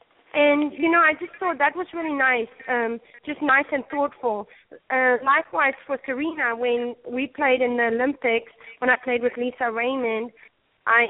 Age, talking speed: 30-49, 175 wpm